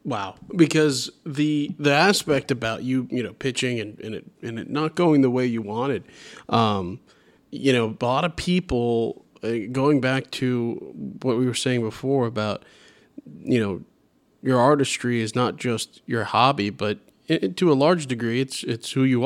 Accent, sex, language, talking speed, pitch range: American, male, English, 170 wpm, 120-150 Hz